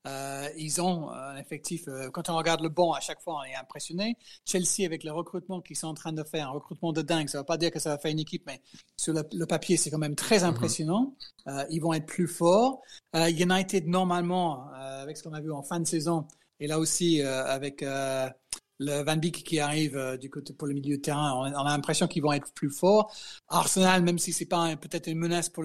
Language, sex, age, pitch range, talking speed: French, male, 40-59, 145-175 Hz, 255 wpm